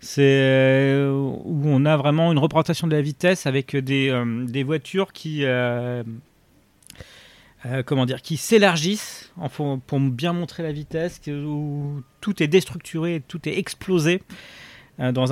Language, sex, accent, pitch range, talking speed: French, male, French, 130-165 Hz, 140 wpm